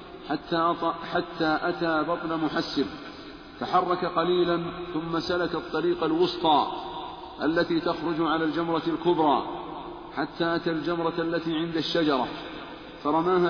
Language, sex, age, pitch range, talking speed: Arabic, male, 50-69, 165-175 Hz, 100 wpm